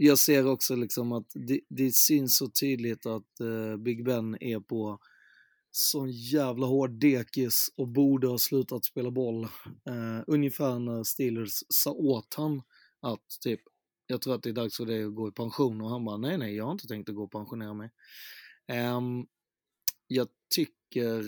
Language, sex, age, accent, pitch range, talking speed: Swedish, male, 30-49, native, 110-135 Hz, 180 wpm